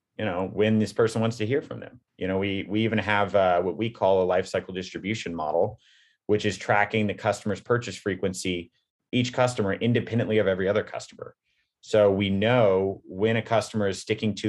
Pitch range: 95-120 Hz